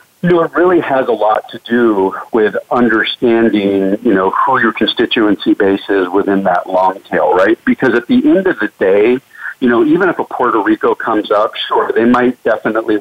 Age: 50-69